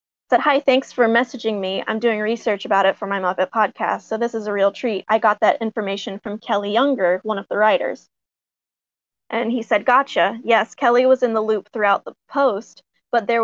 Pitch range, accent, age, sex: 205-240 Hz, American, 20-39, female